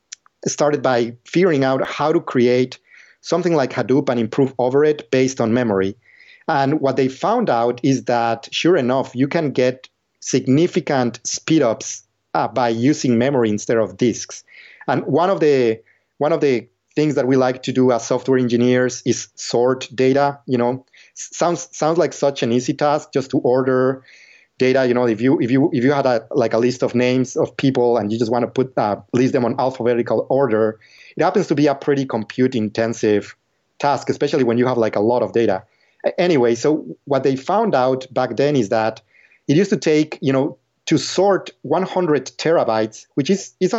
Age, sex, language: 30-49, male, English